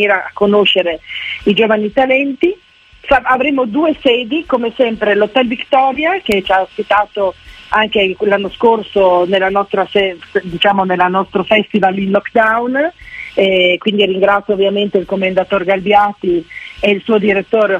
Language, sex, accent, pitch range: Italian, female, native, 195-230 Hz